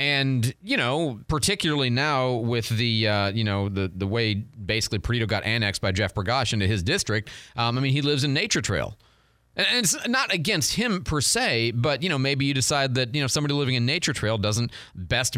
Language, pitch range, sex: English, 110-150 Hz, male